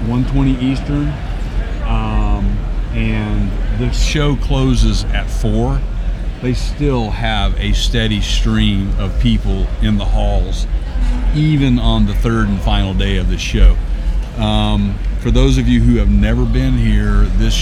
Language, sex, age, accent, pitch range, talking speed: English, male, 40-59, American, 100-120 Hz, 145 wpm